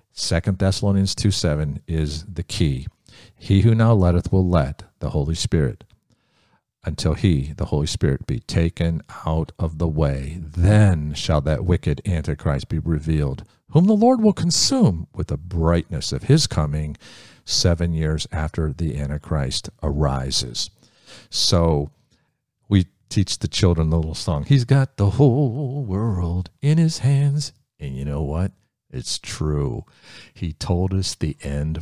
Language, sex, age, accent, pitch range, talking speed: English, male, 50-69, American, 75-105 Hz, 150 wpm